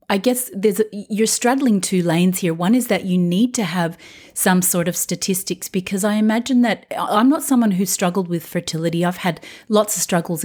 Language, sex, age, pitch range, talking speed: English, female, 30-49, 170-210 Hz, 205 wpm